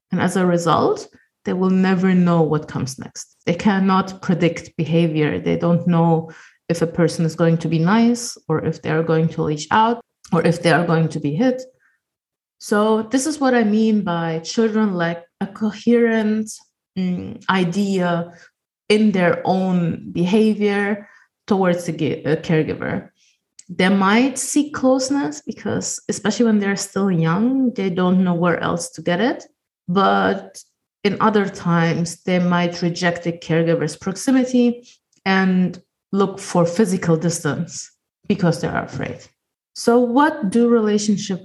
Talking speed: 150 wpm